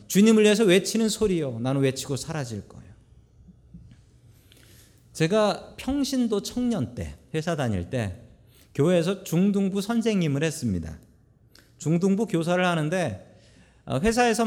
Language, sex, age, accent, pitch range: Korean, male, 40-59, native, 120-195 Hz